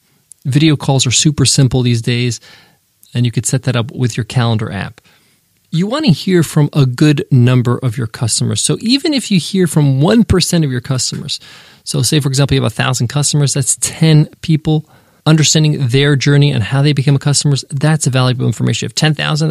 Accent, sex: American, male